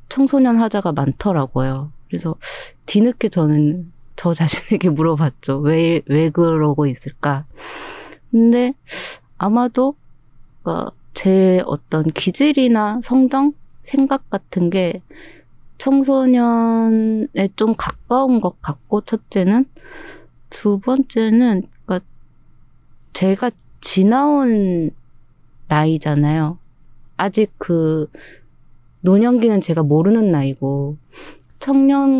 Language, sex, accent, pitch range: Korean, female, native, 155-230 Hz